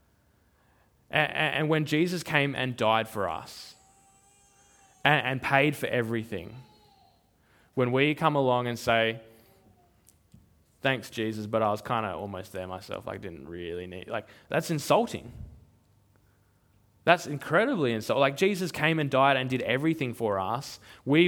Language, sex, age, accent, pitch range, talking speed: English, male, 20-39, Australian, 100-155 Hz, 140 wpm